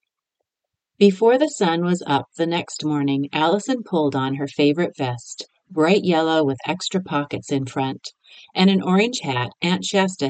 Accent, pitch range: American, 140-190 Hz